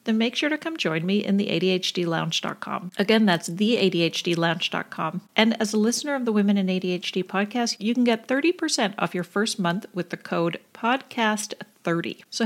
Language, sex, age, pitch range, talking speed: English, female, 40-59, 185-245 Hz, 175 wpm